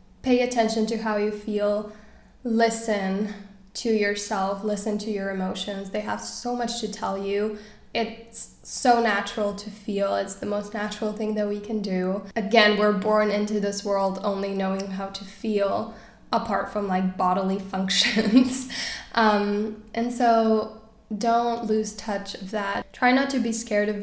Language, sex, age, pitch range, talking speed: English, female, 10-29, 200-220 Hz, 160 wpm